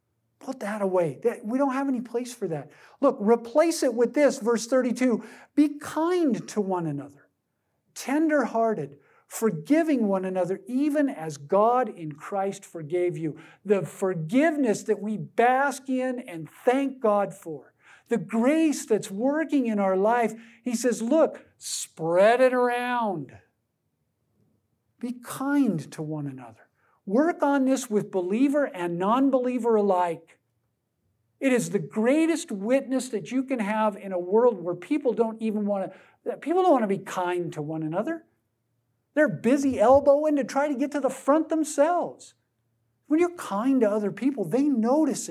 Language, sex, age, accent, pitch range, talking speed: English, male, 50-69, American, 175-260 Hz, 150 wpm